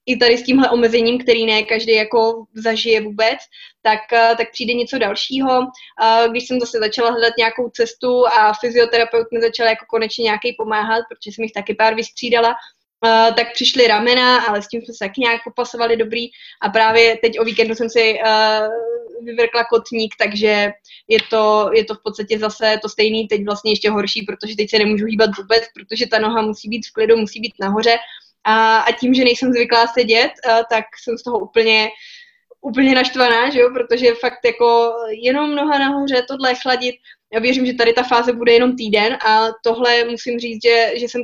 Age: 20-39